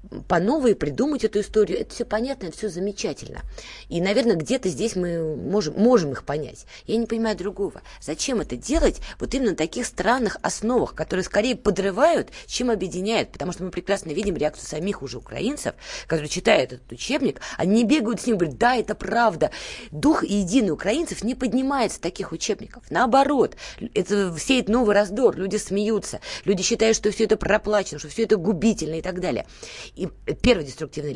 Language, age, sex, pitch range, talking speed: Russian, 20-39, female, 165-225 Hz, 170 wpm